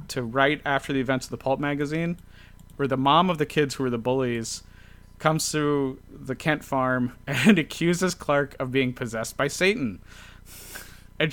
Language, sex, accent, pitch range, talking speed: English, male, American, 105-145 Hz, 180 wpm